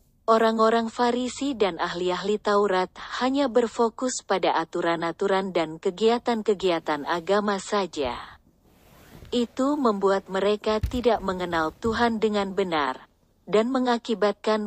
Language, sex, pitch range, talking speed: Indonesian, female, 180-230 Hz, 95 wpm